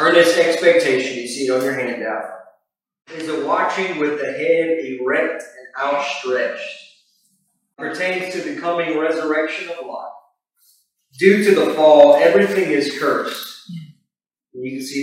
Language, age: English, 40-59